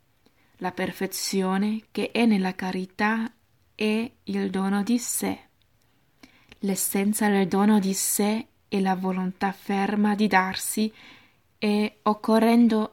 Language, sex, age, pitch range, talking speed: Italian, female, 20-39, 190-215 Hz, 110 wpm